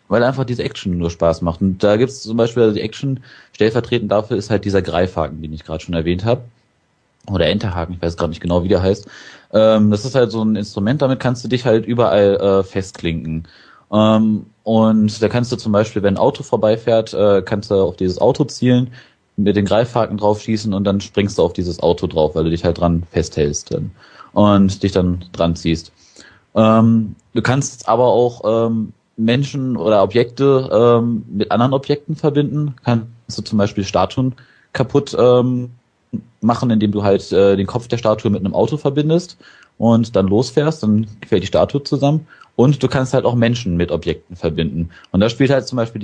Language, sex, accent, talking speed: German, male, German, 190 wpm